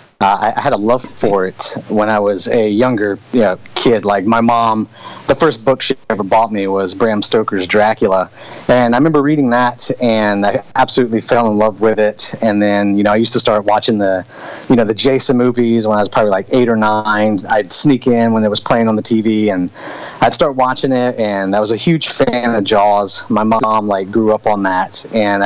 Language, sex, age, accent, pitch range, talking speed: English, male, 30-49, American, 105-125 Hz, 225 wpm